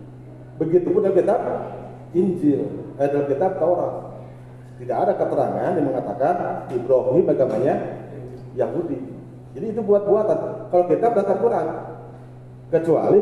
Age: 40-59